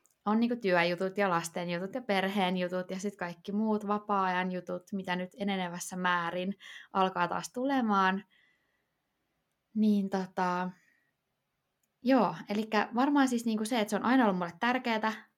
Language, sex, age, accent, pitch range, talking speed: Finnish, female, 20-39, native, 180-210 Hz, 140 wpm